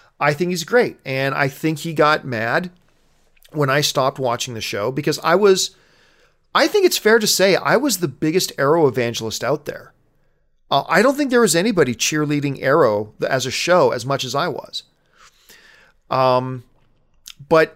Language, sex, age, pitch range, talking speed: English, male, 40-59, 135-185 Hz, 175 wpm